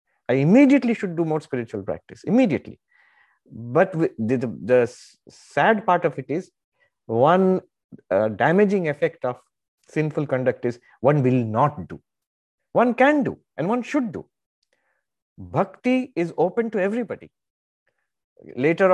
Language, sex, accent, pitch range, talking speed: English, male, Indian, 125-195 Hz, 135 wpm